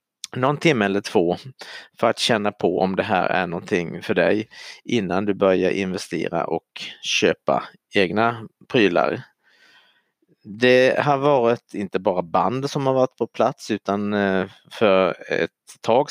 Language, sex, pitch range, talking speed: Swedish, male, 95-130 Hz, 140 wpm